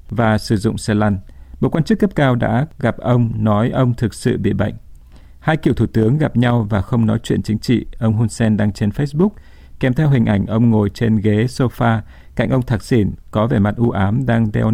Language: Vietnamese